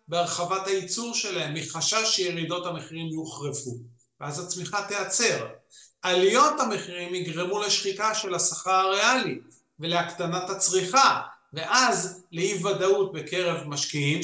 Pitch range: 160-225 Hz